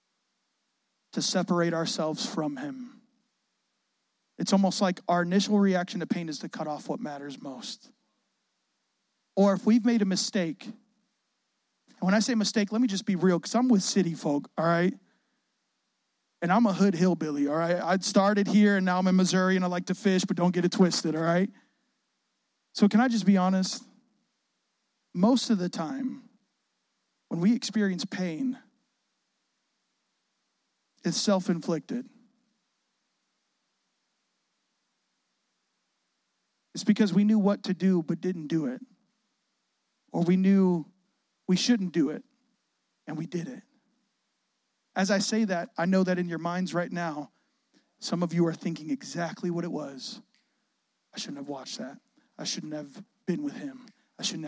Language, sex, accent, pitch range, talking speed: English, male, American, 175-230 Hz, 155 wpm